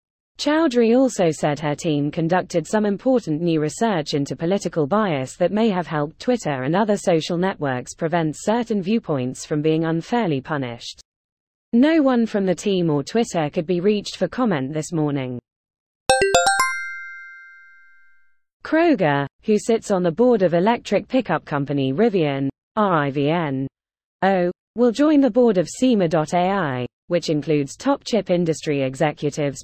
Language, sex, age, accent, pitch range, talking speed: English, female, 20-39, British, 145-215 Hz, 135 wpm